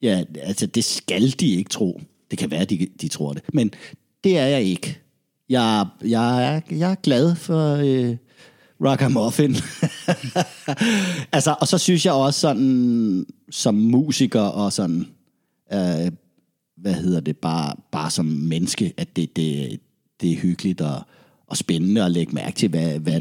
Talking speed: 160 wpm